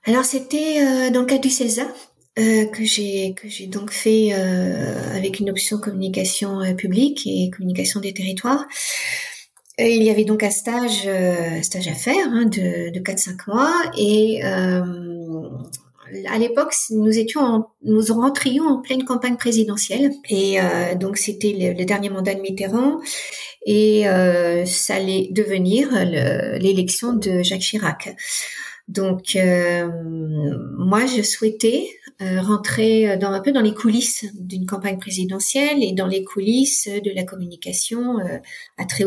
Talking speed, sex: 145 wpm, female